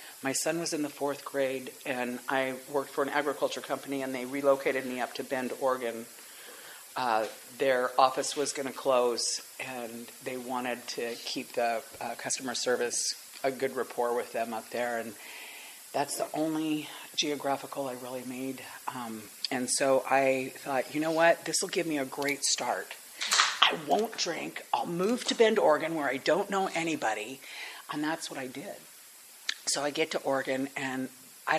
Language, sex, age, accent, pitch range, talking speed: English, female, 40-59, American, 130-160 Hz, 175 wpm